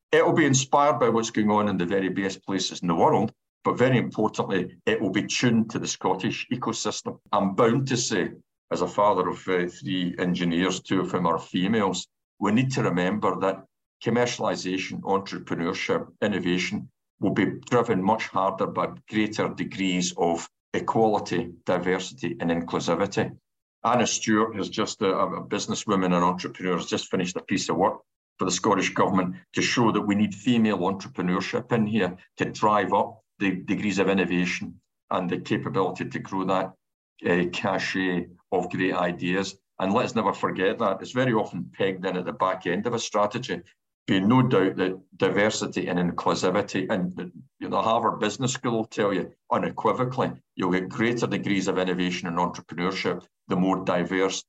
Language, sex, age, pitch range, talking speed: English, male, 60-79, 90-105 Hz, 175 wpm